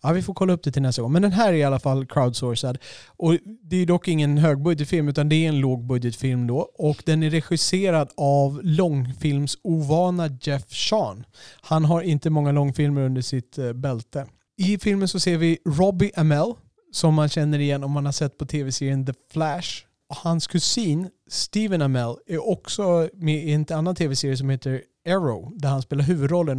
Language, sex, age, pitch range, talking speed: Swedish, male, 30-49, 135-165 Hz, 190 wpm